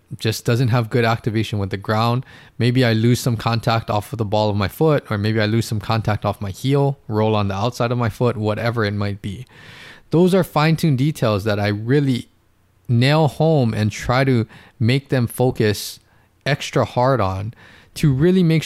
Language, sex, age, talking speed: English, male, 20-39, 195 wpm